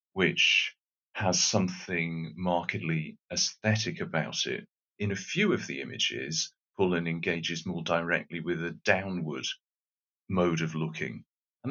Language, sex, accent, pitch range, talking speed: English, male, British, 80-95 Hz, 125 wpm